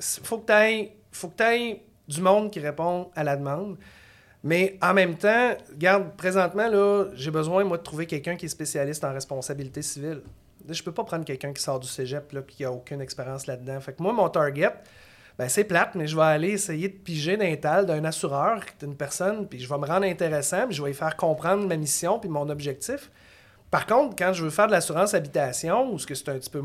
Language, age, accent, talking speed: French, 30-49, Canadian, 225 wpm